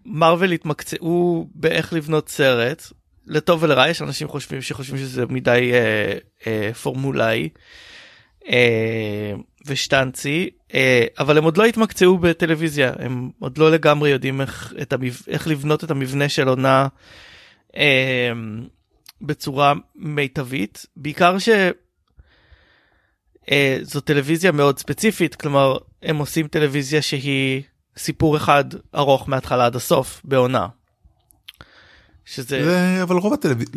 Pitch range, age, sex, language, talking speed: 130-165 Hz, 30-49, male, Hebrew, 110 wpm